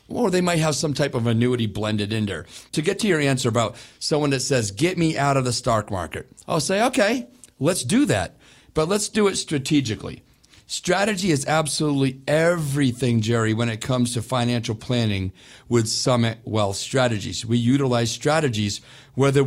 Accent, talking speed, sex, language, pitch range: American, 175 wpm, male, English, 115-145 Hz